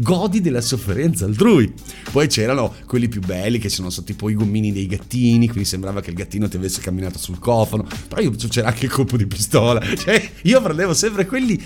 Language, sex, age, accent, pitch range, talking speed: Italian, male, 50-69, native, 105-155 Hz, 210 wpm